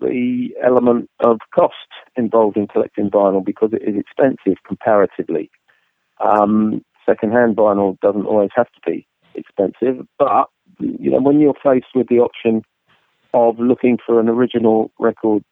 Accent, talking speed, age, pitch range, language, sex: British, 145 wpm, 40-59, 105-120 Hz, English, male